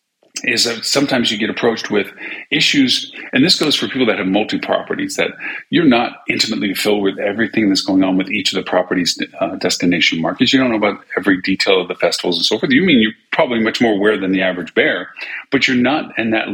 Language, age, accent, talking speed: English, 40-59, American, 225 wpm